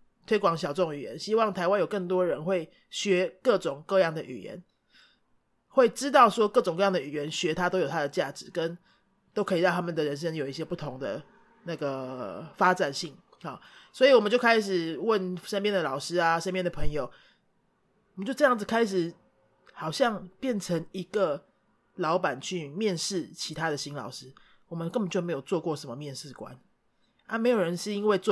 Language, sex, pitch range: Spanish, male, 165-210 Hz